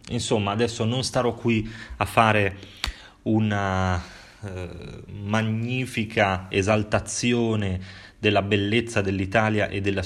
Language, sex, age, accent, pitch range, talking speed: Italian, male, 30-49, native, 95-110 Hz, 95 wpm